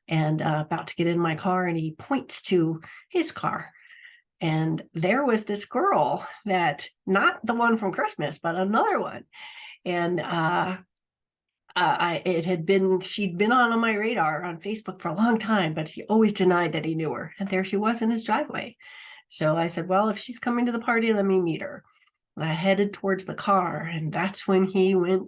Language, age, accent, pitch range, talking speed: English, 50-69, American, 160-210 Hz, 205 wpm